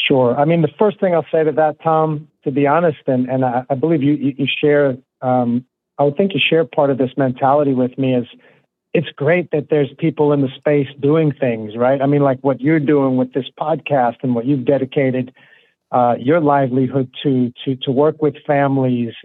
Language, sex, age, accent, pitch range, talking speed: English, male, 50-69, American, 130-155 Hz, 215 wpm